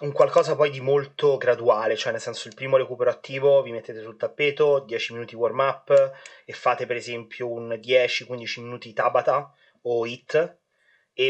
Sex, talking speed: male, 170 wpm